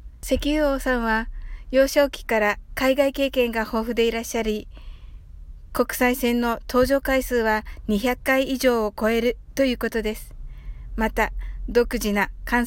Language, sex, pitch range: Japanese, female, 215-255 Hz